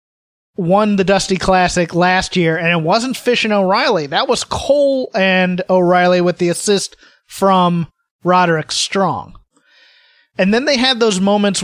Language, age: English, 30-49